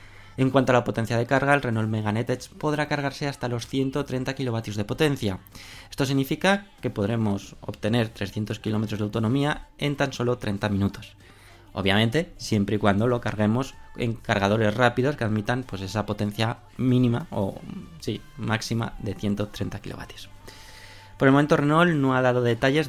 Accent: Spanish